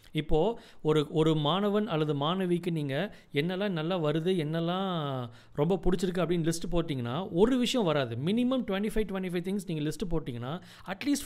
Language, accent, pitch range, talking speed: Tamil, native, 145-195 Hz, 150 wpm